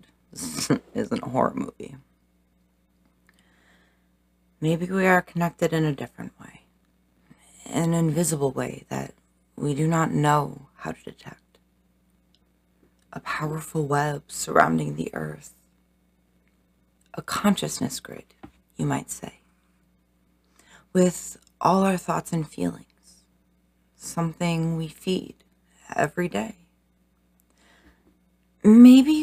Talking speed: 95 wpm